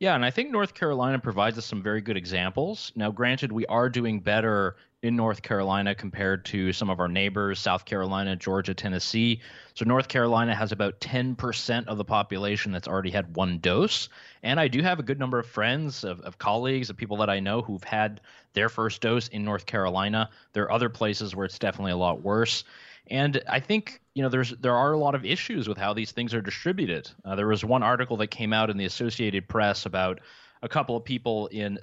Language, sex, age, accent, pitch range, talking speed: English, male, 20-39, American, 100-120 Hz, 220 wpm